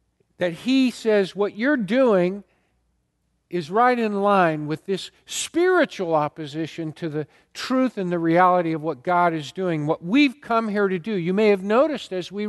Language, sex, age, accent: English, male, 50-69, American